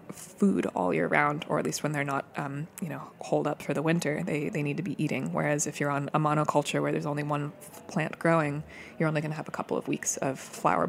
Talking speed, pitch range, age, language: 260 wpm, 140-160 Hz, 20-39, English